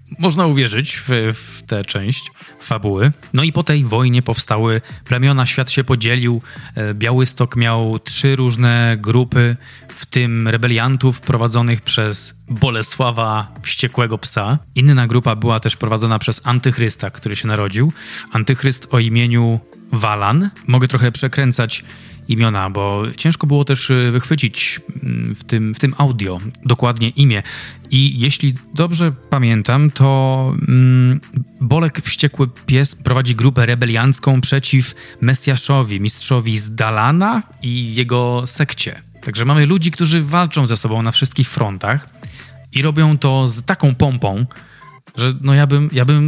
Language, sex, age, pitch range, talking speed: Polish, male, 20-39, 115-140 Hz, 130 wpm